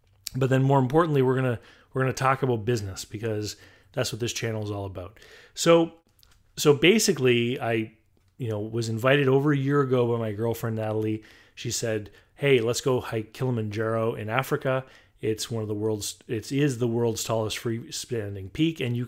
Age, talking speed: 30-49, 185 wpm